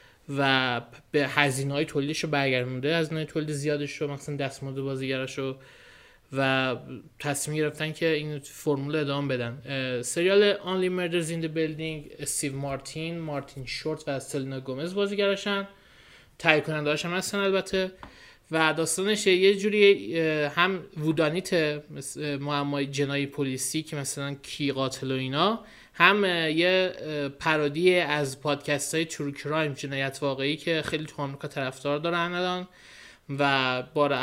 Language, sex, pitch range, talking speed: Persian, male, 140-165 Hz, 130 wpm